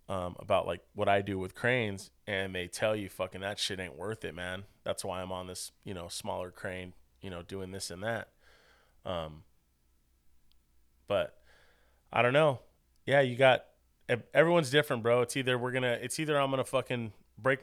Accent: American